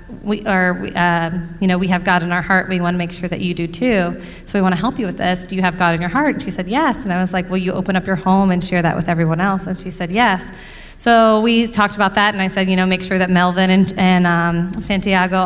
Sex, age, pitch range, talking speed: female, 20-39, 180-210 Hz, 305 wpm